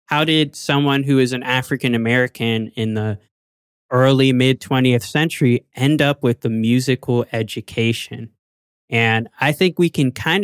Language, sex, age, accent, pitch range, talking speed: English, male, 20-39, American, 115-135 Hz, 145 wpm